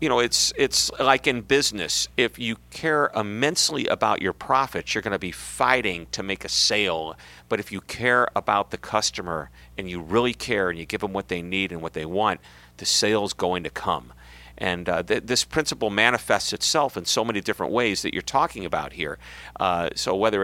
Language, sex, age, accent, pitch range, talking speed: English, male, 40-59, American, 70-115 Hz, 205 wpm